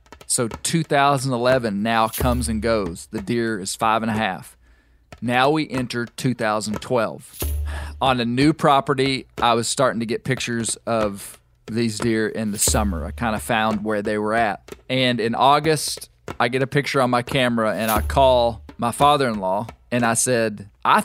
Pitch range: 110-145 Hz